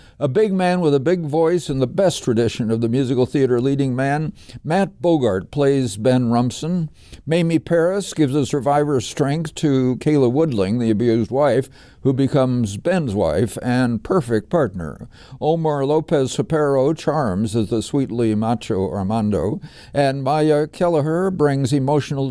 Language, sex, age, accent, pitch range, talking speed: English, male, 60-79, American, 115-150 Hz, 145 wpm